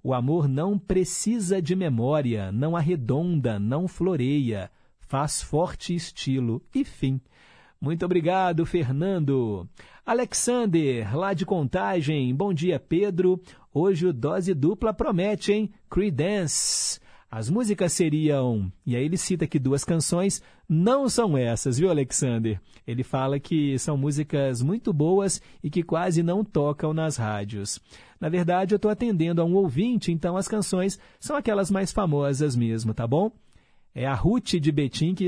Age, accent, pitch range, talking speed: 50-69, Brazilian, 130-185 Hz, 145 wpm